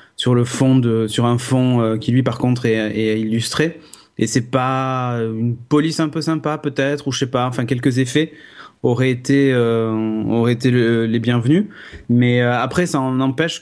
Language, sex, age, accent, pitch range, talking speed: French, male, 30-49, French, 115-145 Hz, 200 wpm